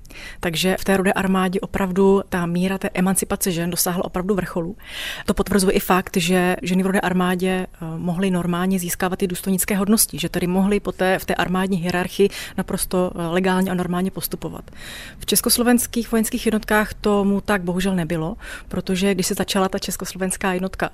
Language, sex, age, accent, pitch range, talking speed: Czech, female, 30-49, native, 180-200 Hz, 165 wpm